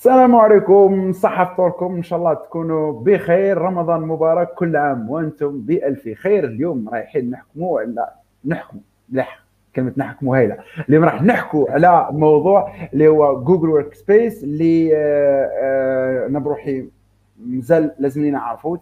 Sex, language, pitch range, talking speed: male, Arabic, 125-170 Hz, 125 wpm